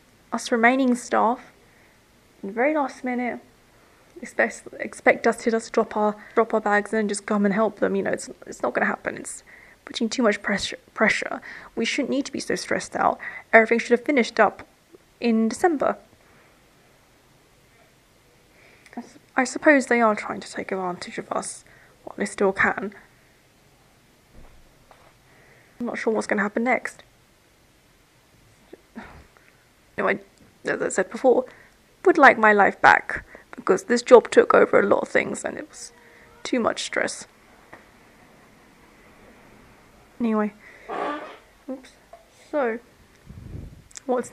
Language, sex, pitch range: English, female, 210-260 Hz